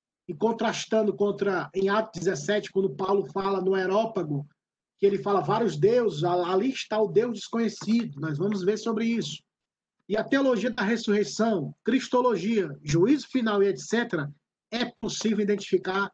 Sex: male